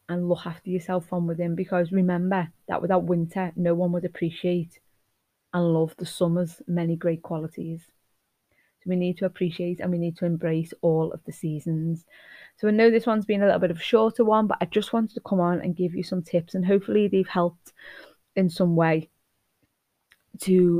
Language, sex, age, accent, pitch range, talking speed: English, female, 20-39, British, 170-190 Hz, 200 wpm